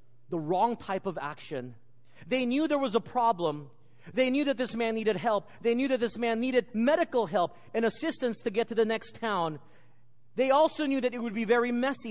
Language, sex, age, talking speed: English, male, 40-59, 215 wpm